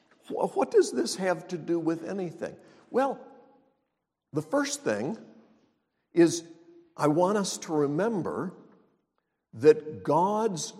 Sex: male